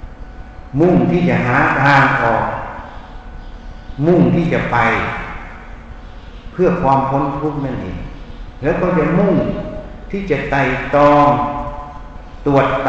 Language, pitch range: Thai, 115-160 Hz